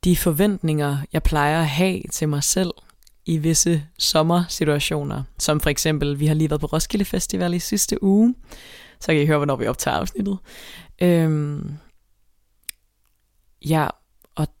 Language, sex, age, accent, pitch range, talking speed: Danish, female, 20-39, native, 140-170 Hz, 140 wpm